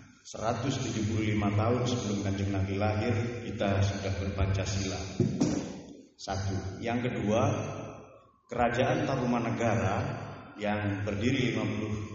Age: 30-49